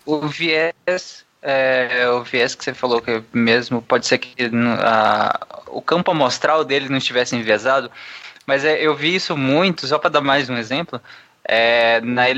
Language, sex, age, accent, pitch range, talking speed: Portuguese, male, 20-39, Brazilian, 140-210 Hz, 150 wpm